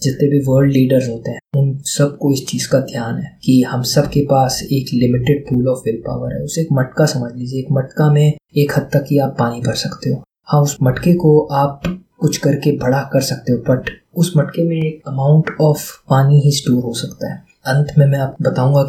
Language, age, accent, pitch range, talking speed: Hindi, 20-39, native, 130-145 Hz, 225 wpm